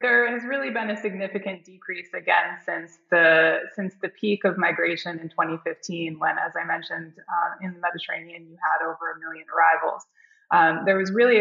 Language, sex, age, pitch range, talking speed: English, female, 20-39, 170-200 Hz, 185 wpm